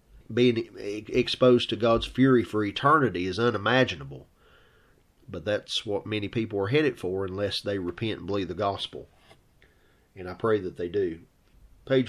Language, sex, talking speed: English, male, 155 wpm